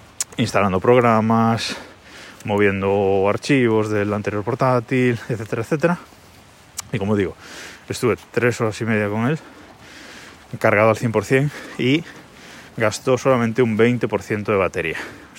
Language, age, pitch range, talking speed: Spanish, 20-39, 110-135 Hz, 115 wpm